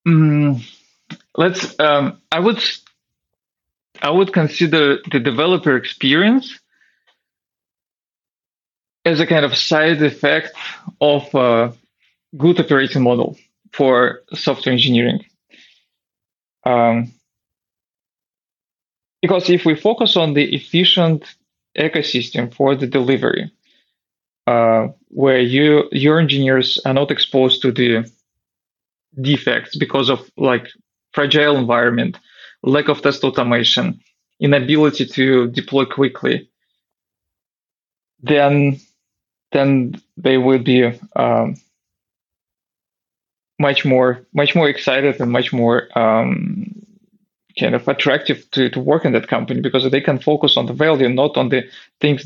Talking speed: 110 wpm